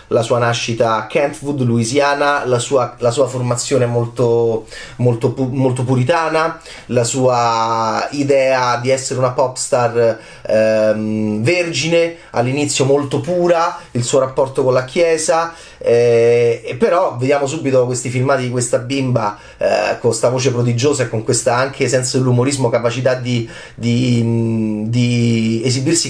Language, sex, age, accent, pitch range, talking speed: Italian, male, 30-49, native, 120-155 Hz, 140 wpm